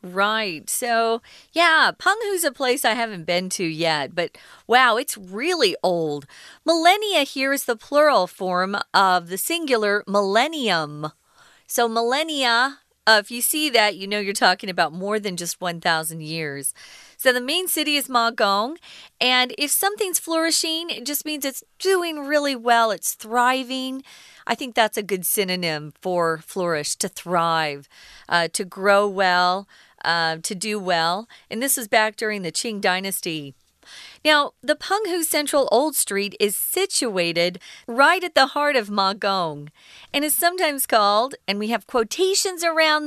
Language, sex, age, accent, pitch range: Chinese, female, 40-59, American, 185-290 Hz